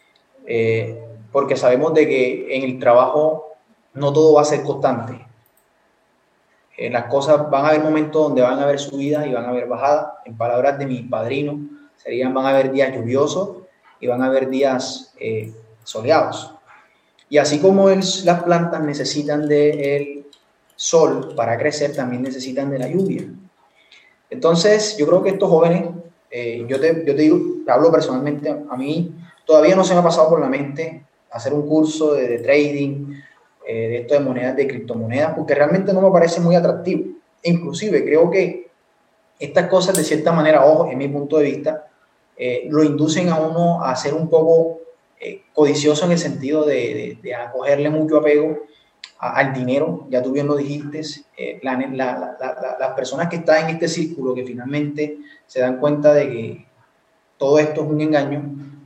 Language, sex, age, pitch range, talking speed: Spanish, male, 20-39, 135-160 Hz, 180 wpm